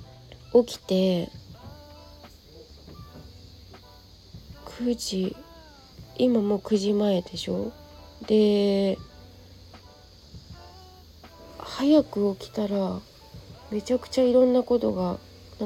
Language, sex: Japanese, female